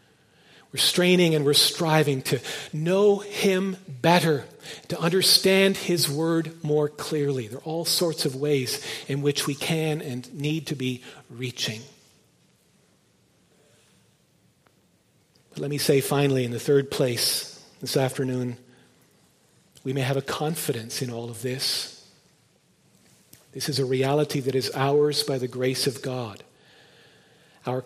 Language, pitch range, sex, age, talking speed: English, 135-165 Hz, male, 40-59, 135 wpm